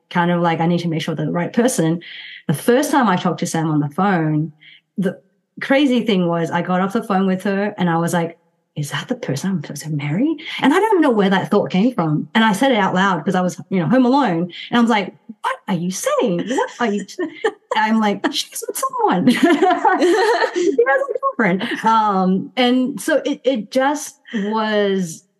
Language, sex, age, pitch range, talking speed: English, female, 30-49, 170-225 Hz, 225 wpm